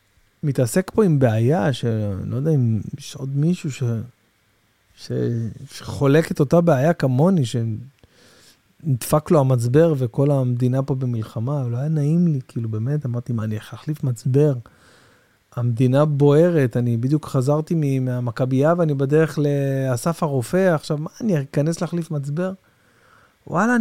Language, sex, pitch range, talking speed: Hebrew, male, 125-185 Hz, 135 wpm